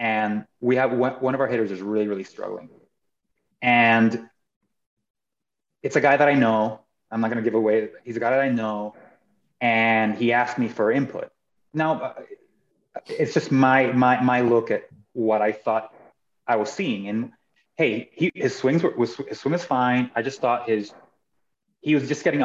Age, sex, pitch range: 30-49, male, 110-135 Hz